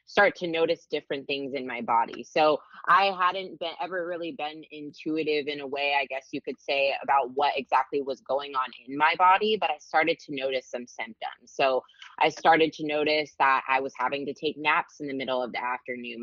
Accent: American